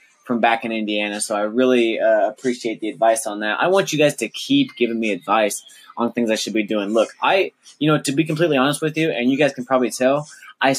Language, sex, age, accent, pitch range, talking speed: English, male, 20-39, American, 110-140 Hz, 250 wpm